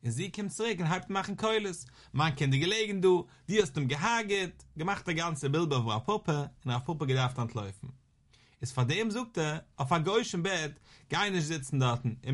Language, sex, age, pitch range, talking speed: English, male, 30-49, 130-175 Hz, 210 wpm